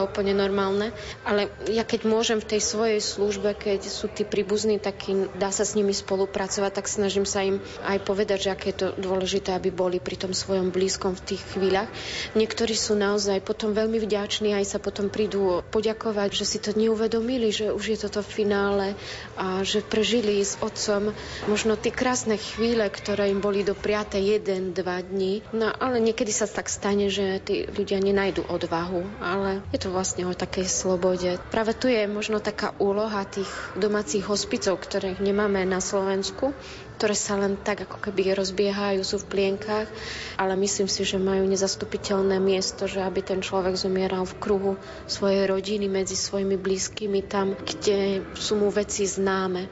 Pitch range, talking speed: 190-210 Hz, 175 wpm